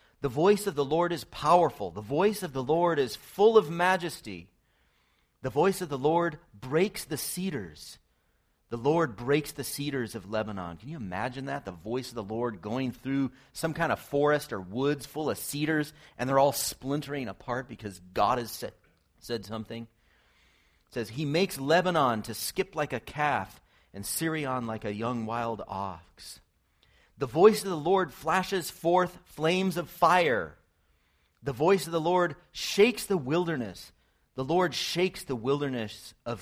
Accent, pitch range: American, 105-160 Hz